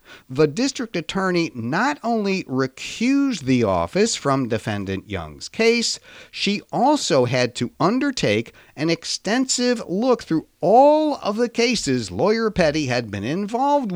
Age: 50-69